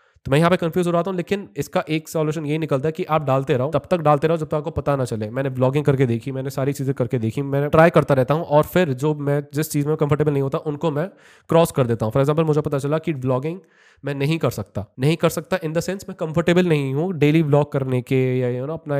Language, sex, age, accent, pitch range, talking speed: Hindi, male, 20-39, native, 130-160 Hz, 280 wpm